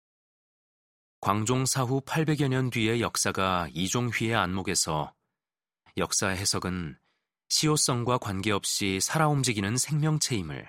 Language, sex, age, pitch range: Korean, male, 30-49, 95-125 Hz